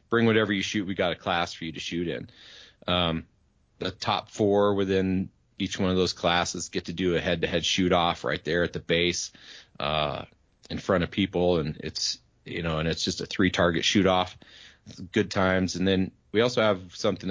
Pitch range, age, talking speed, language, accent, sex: 85-95 Hz, 30-49, 215 wpm, English, American, male